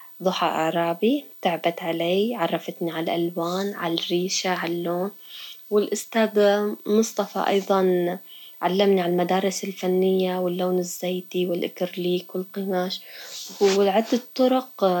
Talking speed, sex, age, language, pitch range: 95 wpm, female, 20-39, Arabic, 180-205 Hz